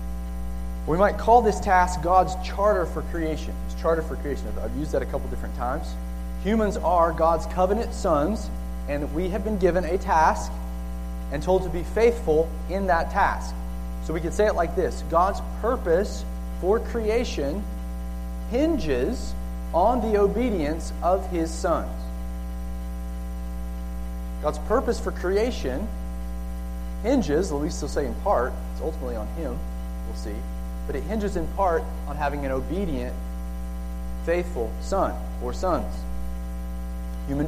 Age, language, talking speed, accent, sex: 30-49, English, 140 wpm, American, male